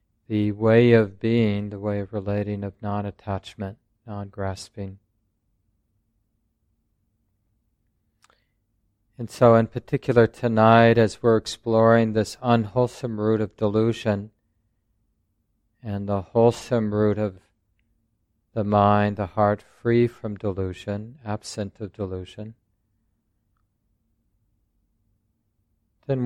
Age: 40-59